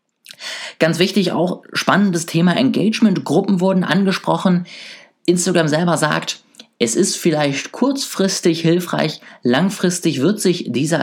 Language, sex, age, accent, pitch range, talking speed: German, male, 20-39, German, 135-210 Hz, 110 wpm